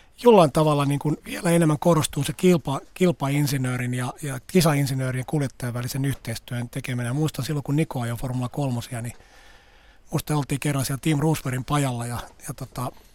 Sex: male